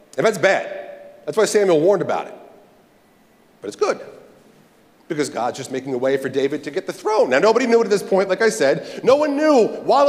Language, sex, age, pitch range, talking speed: English, male, 40-59, 170-270 Hz, 220 wpm